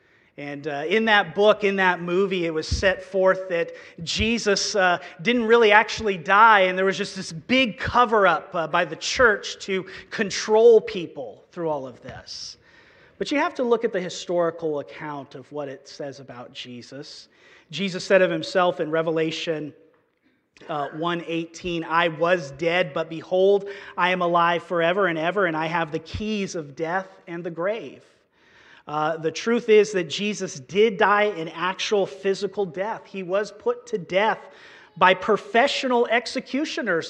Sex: male